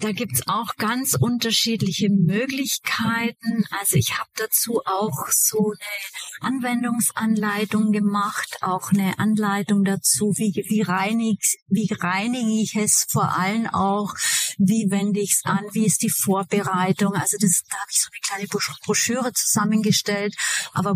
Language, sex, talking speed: German, female, 140 wpm